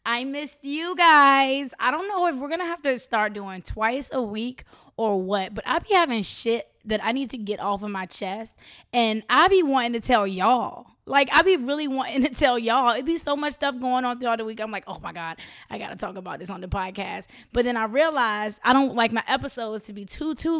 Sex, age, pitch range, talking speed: female, 20-39, 205-255 Hz, 255 wpm